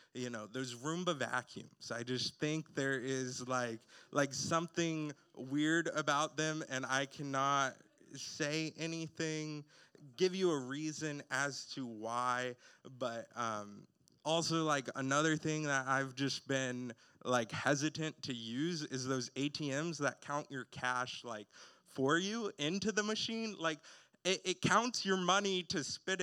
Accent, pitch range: American, 125-160 Hz